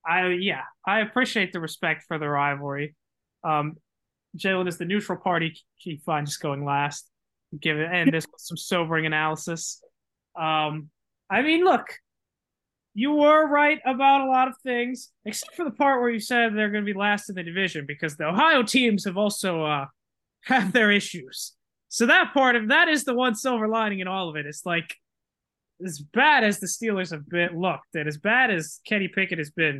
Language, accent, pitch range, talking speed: English, American, 165-240 Hz, 190 wpm